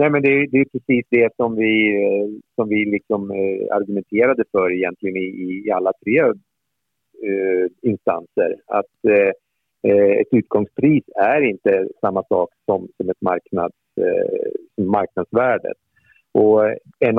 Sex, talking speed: male, 135 wpm